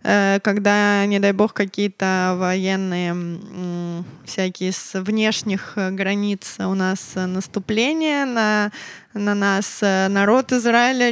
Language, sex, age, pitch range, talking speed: Russian, female, 20-39, 195-225 Hz, 95 wpm